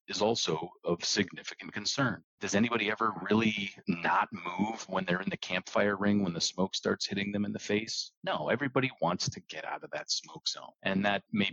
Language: English